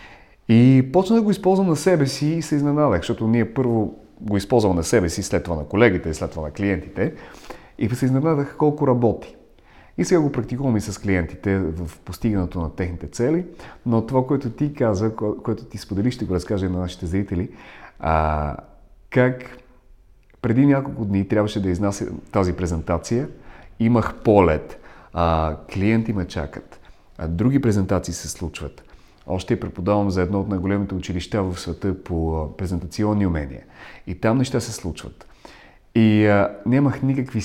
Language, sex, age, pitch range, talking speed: Bulgarian, male, 30-49, 95-130 Hz, 155 wpm